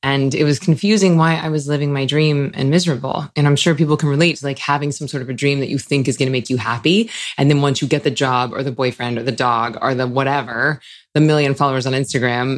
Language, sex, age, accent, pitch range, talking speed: English, female, 20-39, American, 130-155 Hz, 265 wpm